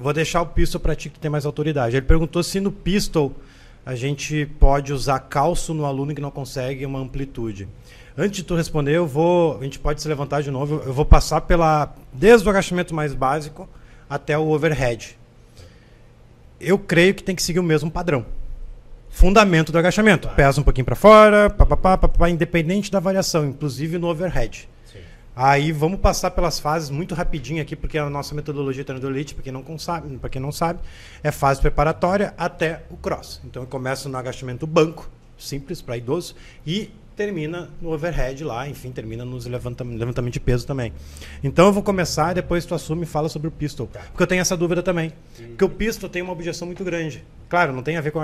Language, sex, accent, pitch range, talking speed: Portuguese, male, Brazilian, 135-175 Hz, 200 wpm